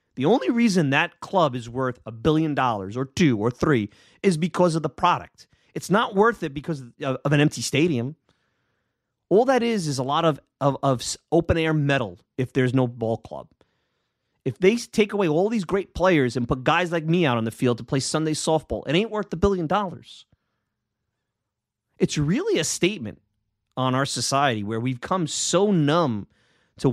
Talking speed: 190 wpm